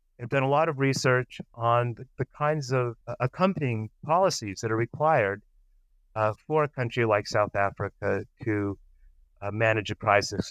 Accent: American